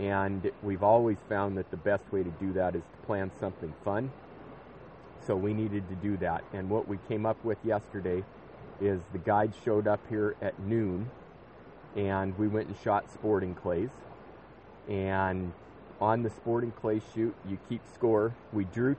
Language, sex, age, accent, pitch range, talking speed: English, male, 30-49, American, 95-110 Hz, 175 wpm